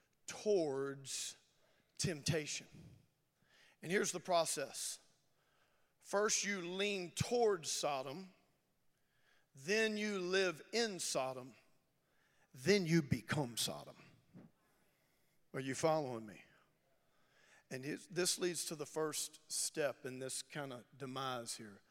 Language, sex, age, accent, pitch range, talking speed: English, male, 40-59, American, 170-275 Hz, 100 wpm